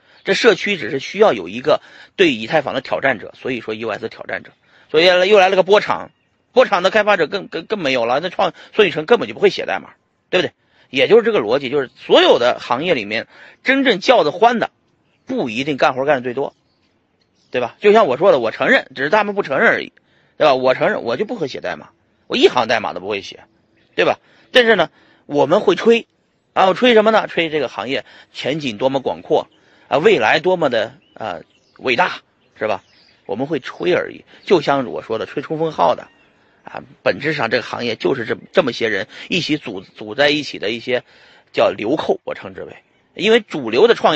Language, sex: Chinese, male